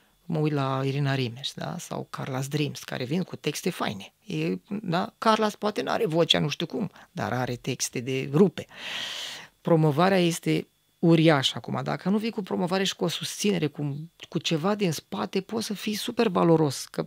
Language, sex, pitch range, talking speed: Romanian, female, 155-210 Hz, 185 wpm